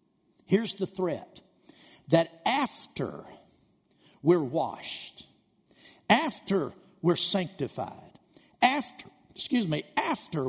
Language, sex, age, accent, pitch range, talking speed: English, male, 60-79, American, 125-175 Hz, 80 wpm